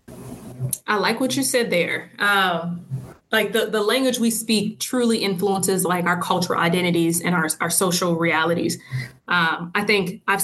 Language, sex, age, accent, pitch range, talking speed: English, female, 20-39, American, 180-205 Hz, 160 wpm